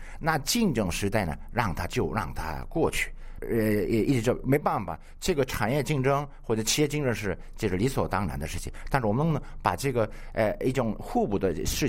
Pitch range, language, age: 85-130 Hz, Chinese, 50-69